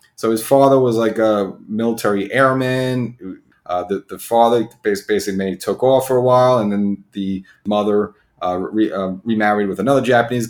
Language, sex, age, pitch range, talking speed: English, male, 30-49, 100-120 Hz, 160 wpm